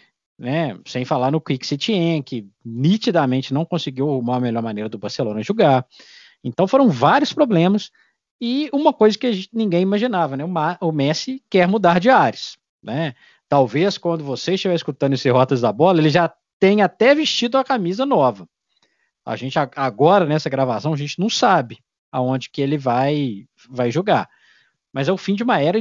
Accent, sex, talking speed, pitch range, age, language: Brazilian, male, 175 wpm, 130-185 Hz, 20-39, Portuguese